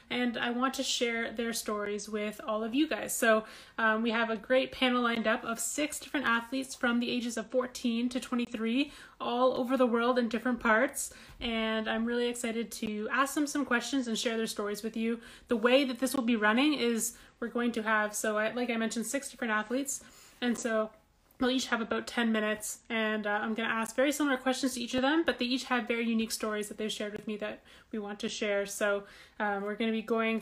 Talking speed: 235 wpm